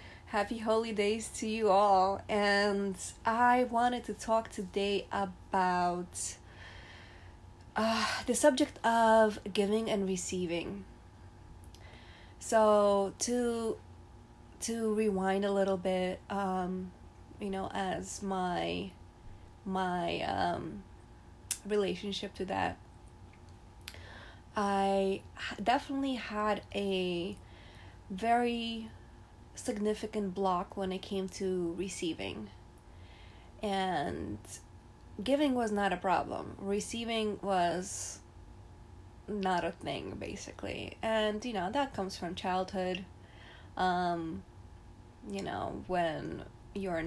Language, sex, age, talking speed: English, female, 20-39, 95 wpm